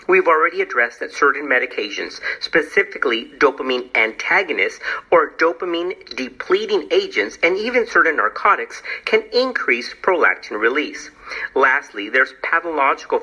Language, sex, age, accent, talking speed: English, male, 50-69, American, 105 wpm